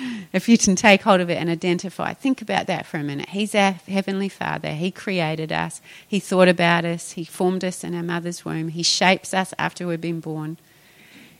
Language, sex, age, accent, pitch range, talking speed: English, female, 30-49, Australian, 165-195 Hz, 210 wpm